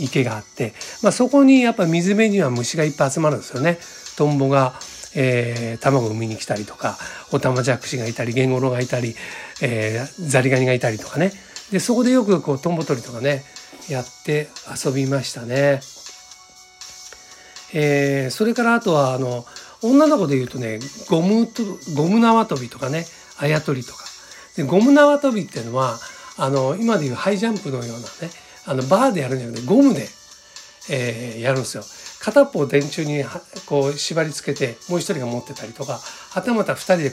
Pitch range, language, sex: 130-195 Hz, Japanese, male